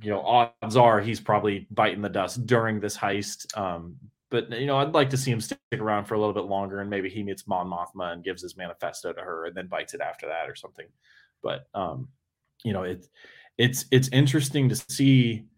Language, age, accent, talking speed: English, 20-39, American, 225 wpm